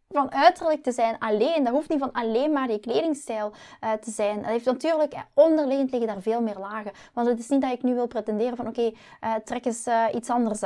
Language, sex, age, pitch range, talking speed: Dutch, female, 20-39, 220-275 Hz, 250 wpm